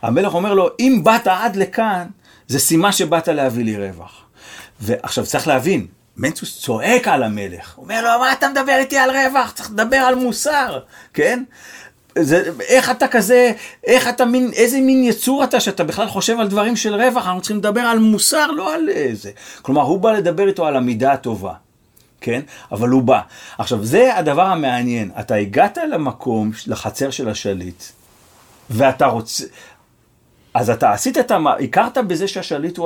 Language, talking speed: Hebrew, 170 wpm